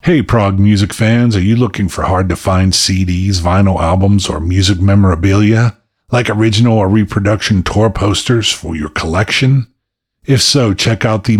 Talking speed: 155 wpm